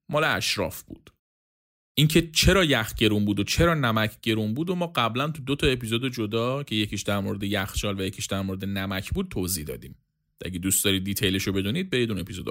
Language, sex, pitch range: Persian, male, 100-150 Hz